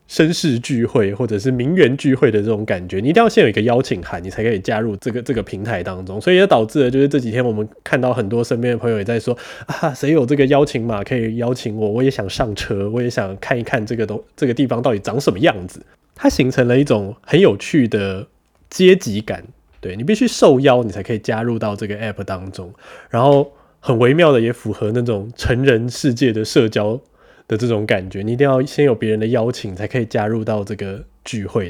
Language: Chinese